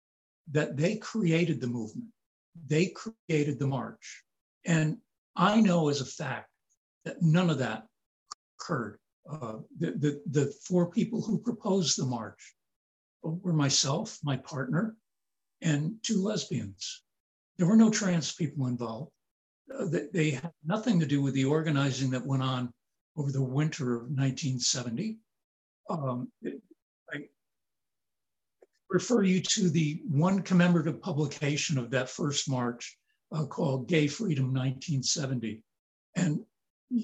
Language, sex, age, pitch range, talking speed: English, male, 60-79, 130-180 Hz, 120 wpm